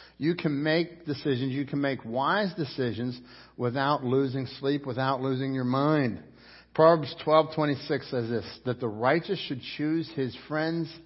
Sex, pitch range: male, 135-180 Hz